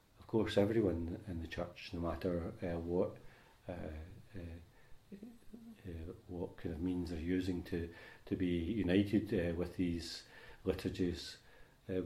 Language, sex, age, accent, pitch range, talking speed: English, male, 40-59, British, 85-105 Hz, 140 wpm